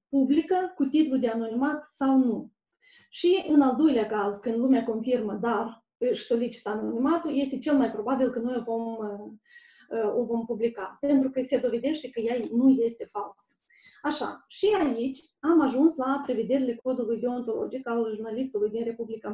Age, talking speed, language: 20-39, 160 wpm, Romanian